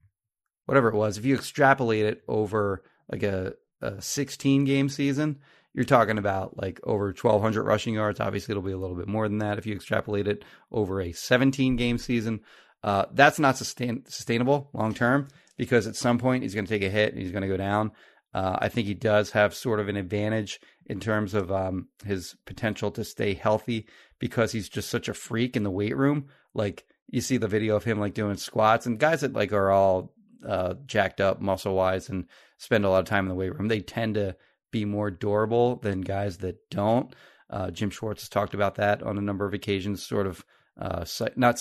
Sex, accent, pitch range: male, American, 100-120 Hz